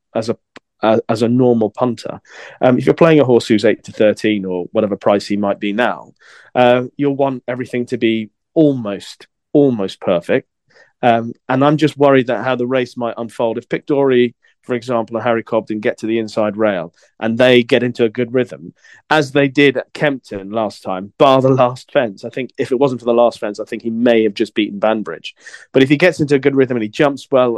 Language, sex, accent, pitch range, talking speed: English, male, British, 110-130 Hz, 225 wpm